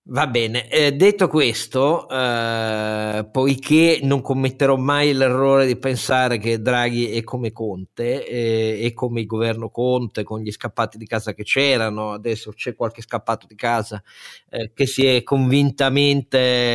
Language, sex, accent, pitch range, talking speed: Italian, male, native, 115-135 Hz, 150 wpm